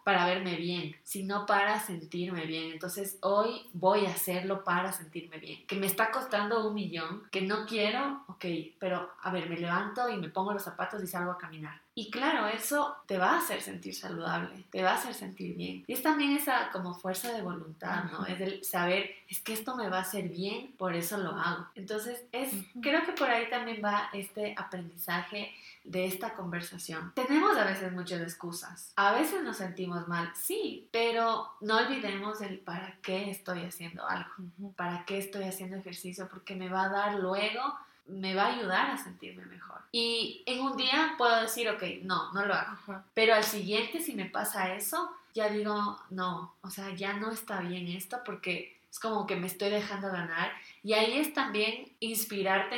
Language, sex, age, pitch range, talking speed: Spanish, female, 20-39, 180-220 Hz, 195 wpm